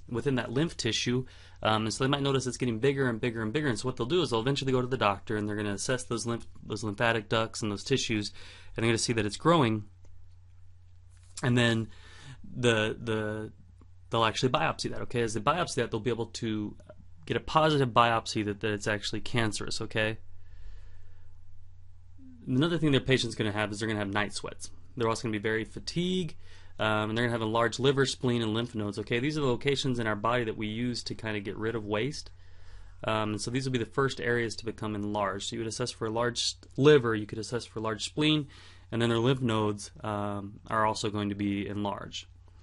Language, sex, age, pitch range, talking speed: English, male, 30-49, 100-125 Hz, 235 wpm